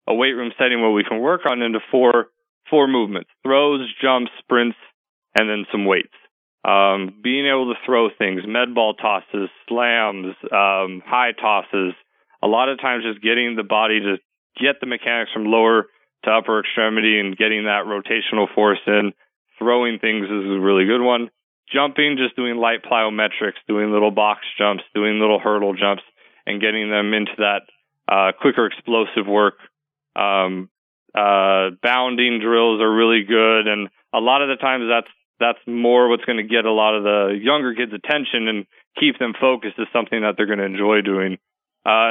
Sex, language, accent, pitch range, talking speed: male, English, American, 105-125 Hz, 180 wpm